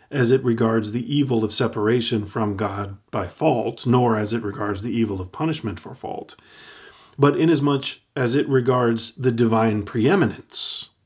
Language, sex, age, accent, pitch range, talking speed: English, male, 40-59, American, 105-135 Hz, 155 wpm